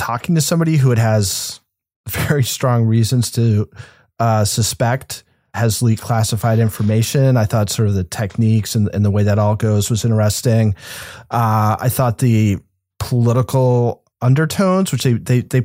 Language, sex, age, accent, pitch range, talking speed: English, male, 40-59, American, 110-135 Hz, 155 wpm